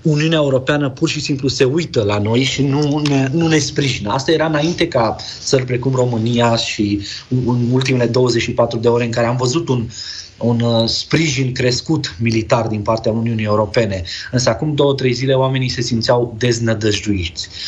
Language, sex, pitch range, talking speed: Romanian, male, 110-130 Hz, 170 wpm